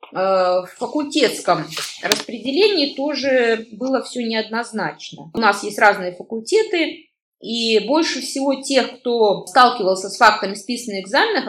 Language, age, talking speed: Russian, 20-39, 115 wpm